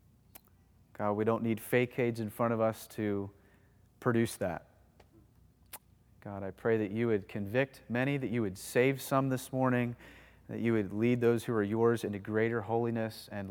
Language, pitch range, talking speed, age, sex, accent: English, 125-180 Hz, 180 wpm, 30-49, male, American